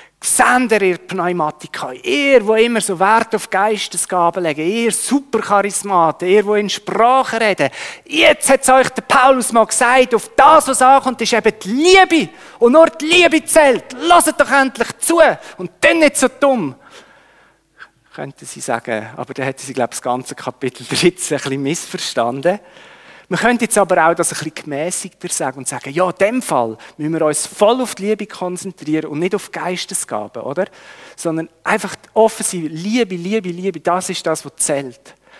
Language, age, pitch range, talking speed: German, 40-59, 155-225 Hz, 180 wpm